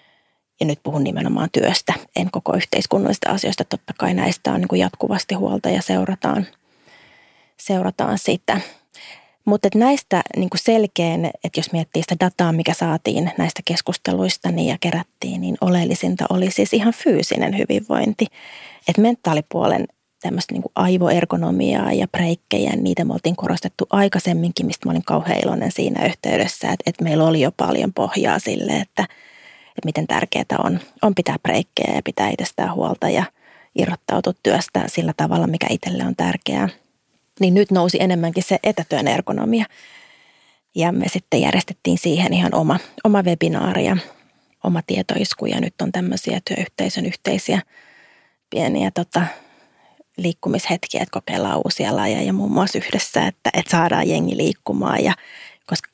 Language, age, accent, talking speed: Finnish, 30-49, native, 145 wpm